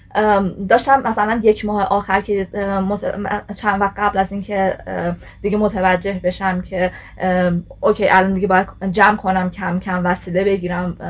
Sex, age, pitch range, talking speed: female, 20-39, 180-205 Hz, 140 wpm